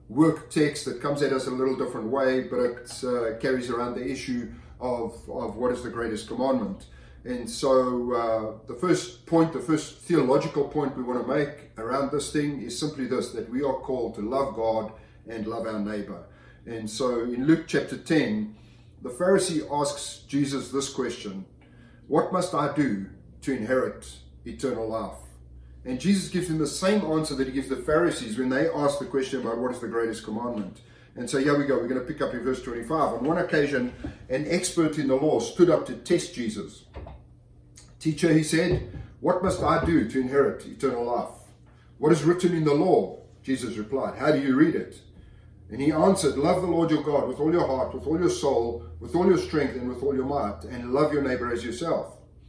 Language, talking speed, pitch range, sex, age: English, 205 wpm, 115-150 Hz, male, 30-49